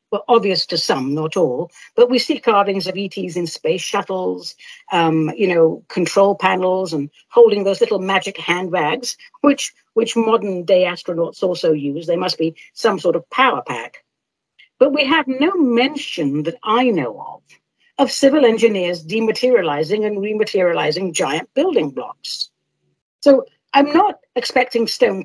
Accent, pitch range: British, 170-270 Hz